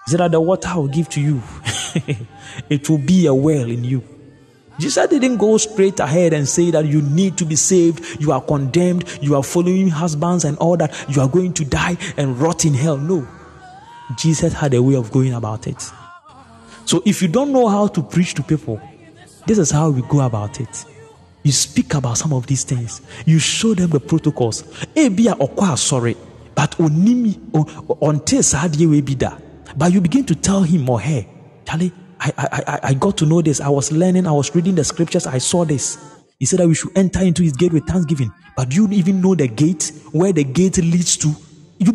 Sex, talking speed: male, 205 wpm